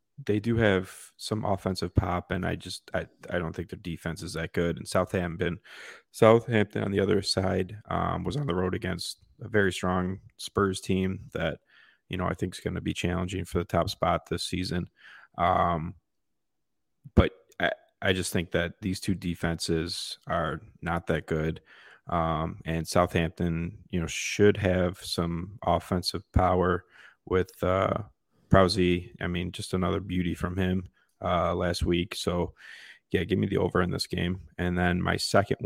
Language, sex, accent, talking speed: English, male, American, 170 wpm